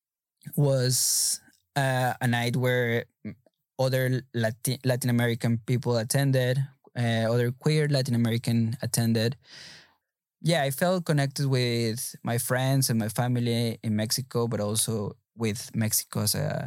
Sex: male